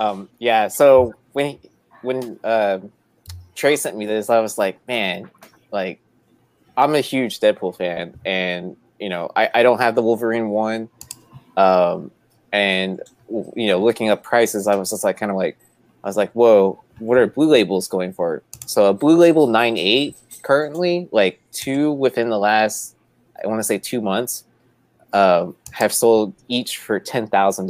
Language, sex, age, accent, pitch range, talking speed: English, male, 20-39, American, 95-120 Hz, 170 wpm